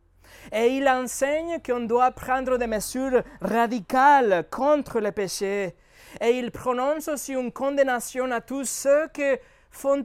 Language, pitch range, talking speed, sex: French, 195-260 Hz, 135 wpm, male